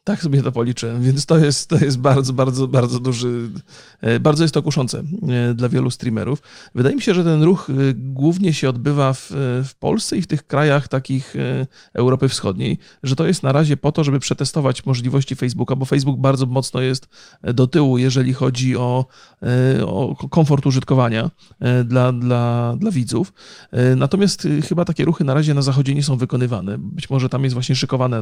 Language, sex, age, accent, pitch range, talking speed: Polish, male, 40-59, native, 130-155 Hz, 180 wpm